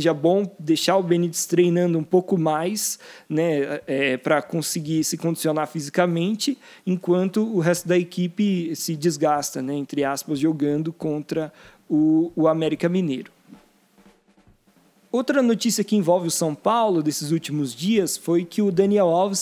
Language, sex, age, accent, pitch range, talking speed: Portuguese, male, 20-39, Brazilian, 155-205 Hz, 140 wpm